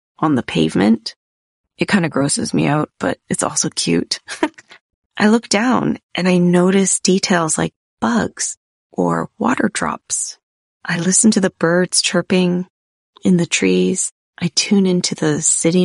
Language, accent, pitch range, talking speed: English, American, 155-195 Hz, 150 wpm